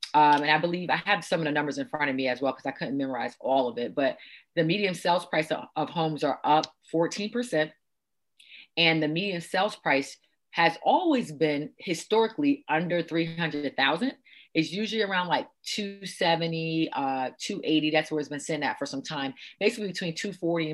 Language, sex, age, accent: English, female, 30-49, American